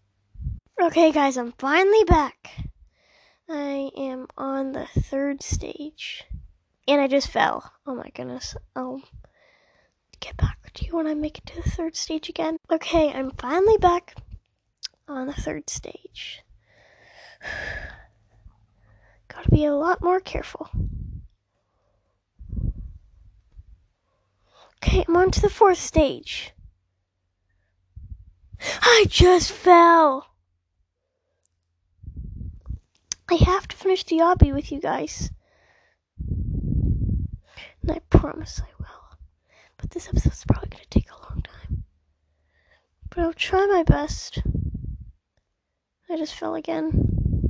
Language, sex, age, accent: English, female, 20-39, American